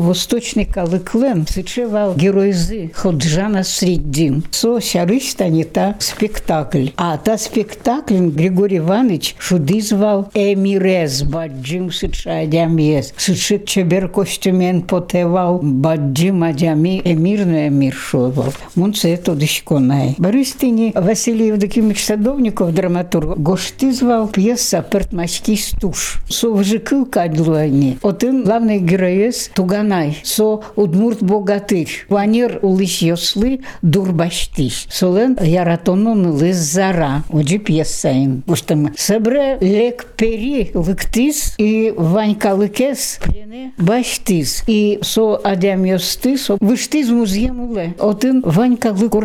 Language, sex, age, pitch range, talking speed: Russian, female, 60-79, 170-220 Hz, 70 wpm